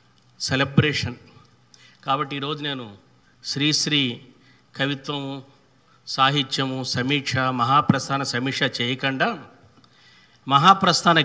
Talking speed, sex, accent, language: 65 wpm, male, native, Telugu